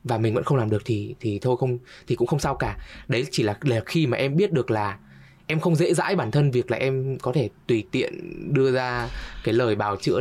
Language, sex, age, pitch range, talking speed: Vietnamese, male, 20-39, 105-140 Hz, 260 wpm